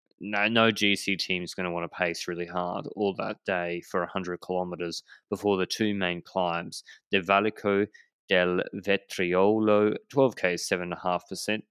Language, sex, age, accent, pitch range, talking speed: English, male, 20-39, Australian, 95-120 Hz, 180 wpm